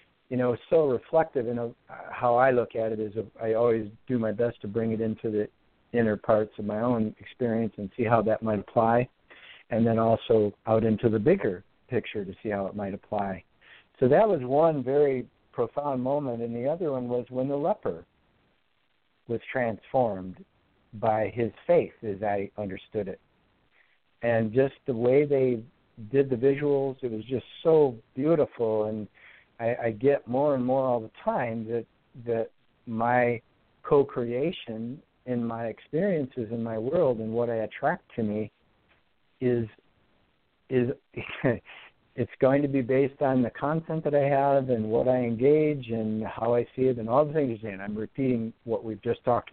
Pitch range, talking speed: 110-130 Hz, 175 wpm